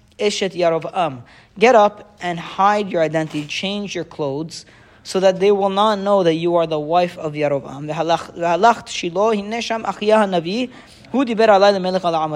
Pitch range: 150-190 Hz